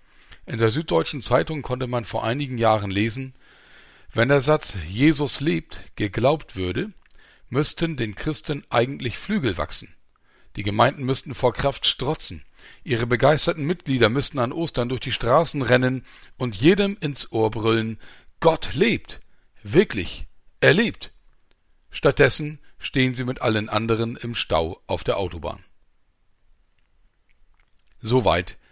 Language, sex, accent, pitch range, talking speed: German, male, German, 105-140 Hz, 125 wpm